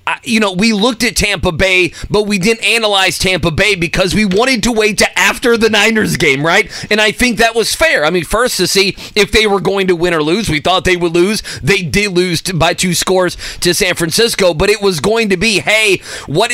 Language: English